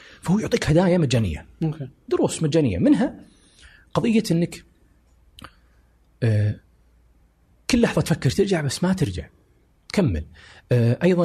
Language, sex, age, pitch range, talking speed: Arabic, male, 30-49, 95-140 Hz, 95 wpm